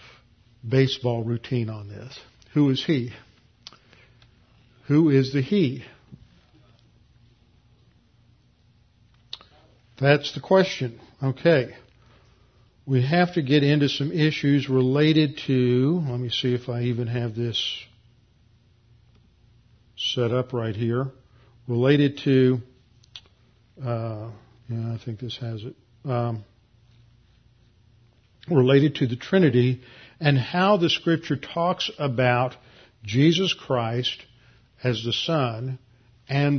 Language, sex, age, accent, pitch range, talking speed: English, male, 50-69, American, 120-145 Hz, 100 wpm